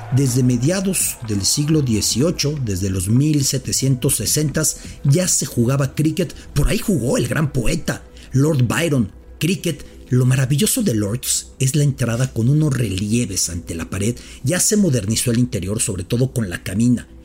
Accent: Mexican